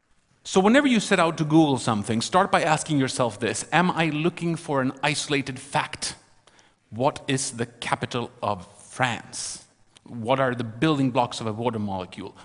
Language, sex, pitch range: Chinese, male, 120-175 Hz